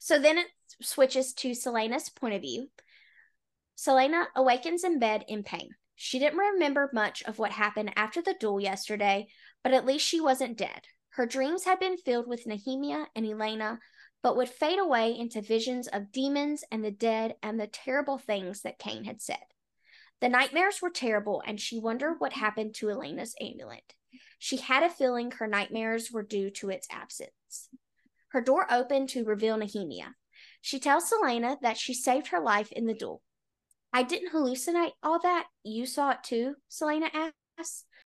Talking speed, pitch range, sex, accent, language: 175 wpm, 220-290 Hz, female, American, English